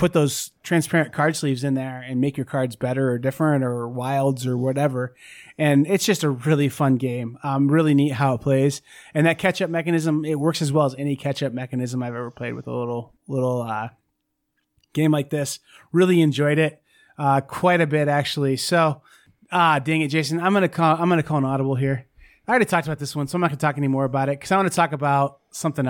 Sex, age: male, 30-49